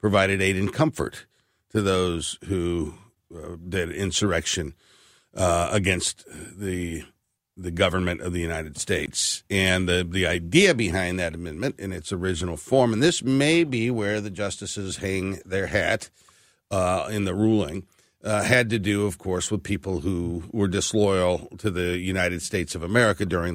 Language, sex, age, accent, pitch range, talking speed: English, male, 60-79, American, 90-115 Hz, 160 wpm